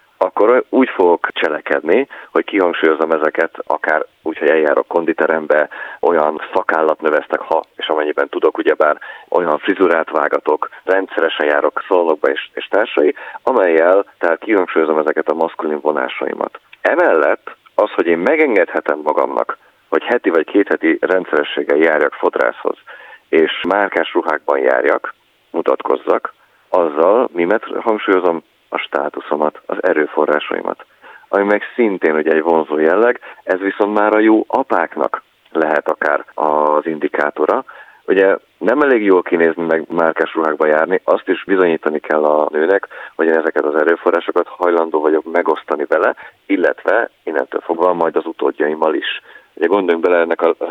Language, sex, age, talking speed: Hungarian, male, 30-49, 135 wpm